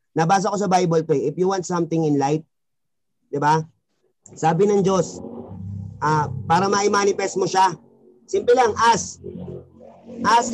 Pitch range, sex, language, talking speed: 165-225 Hz, male, Filipino, 140 wpm